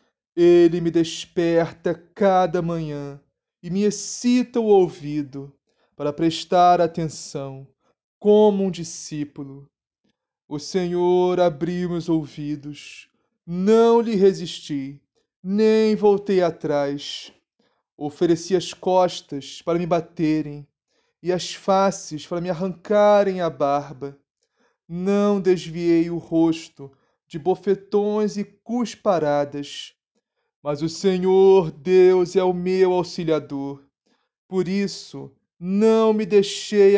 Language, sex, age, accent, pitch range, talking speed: Portuguese, male, 20-39, Brazilian, 155-195 Hz, 100 wpm